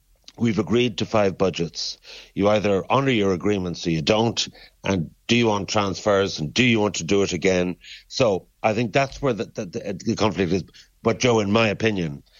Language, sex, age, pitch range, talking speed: English, male, 60-79, 95-120 Hz, 200 wpm